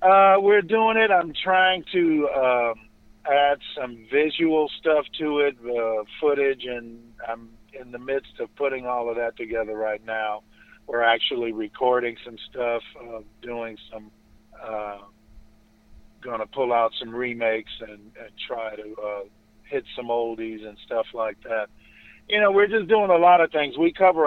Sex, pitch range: male, 110-150 Hz